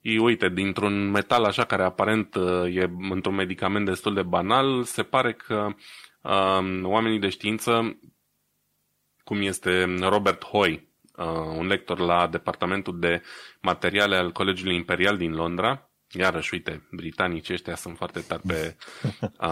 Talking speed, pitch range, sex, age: 140 wpm, 90-110 Hz, male, 20-39